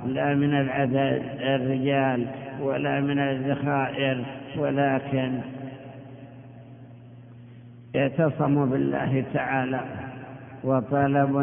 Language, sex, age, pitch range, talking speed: Arabic, male, 60-79, 130-140 Hz, 65 wpm